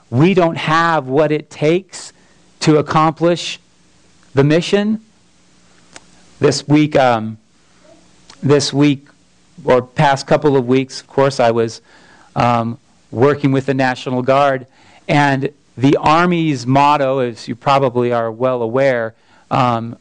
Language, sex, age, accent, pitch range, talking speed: English, male, 40-59, American, 120-150 Hz, 125 wpm